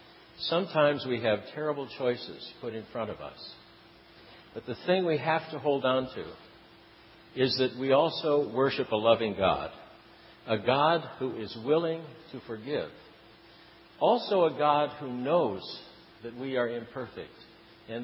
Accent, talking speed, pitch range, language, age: American, 145 wpm, 115-155 Hz, English, 60-79